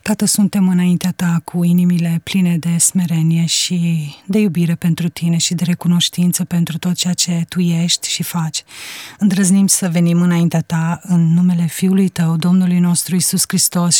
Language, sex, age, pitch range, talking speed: Romanian, female, 30-49, 170-190 Hz, 165 wpm